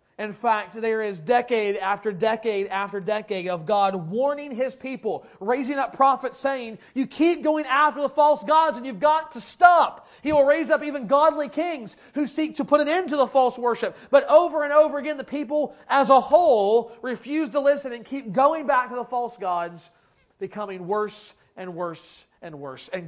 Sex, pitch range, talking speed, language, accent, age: male, 205-280 Hz, 195 wpm, English, American, 30-49